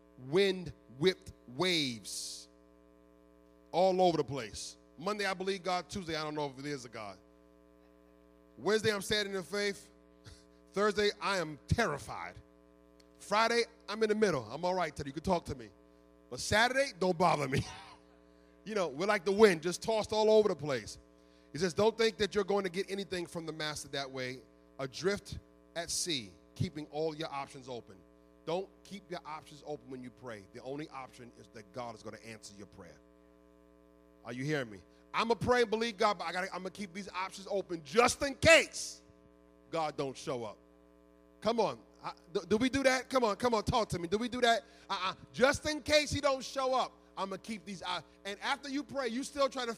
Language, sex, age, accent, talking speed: English, male, 30-49, American, 205 wpm